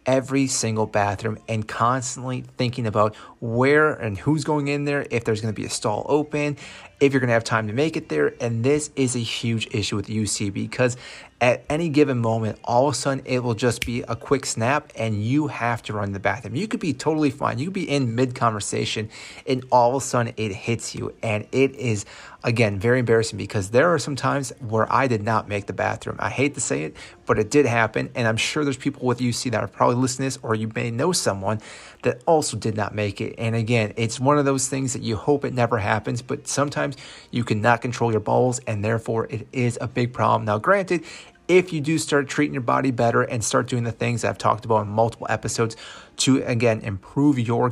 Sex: male